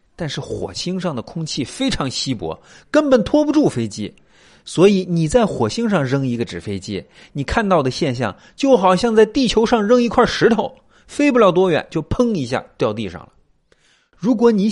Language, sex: Chinese, male